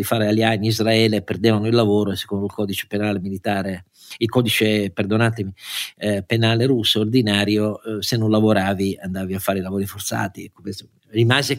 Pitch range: 105-135 Hz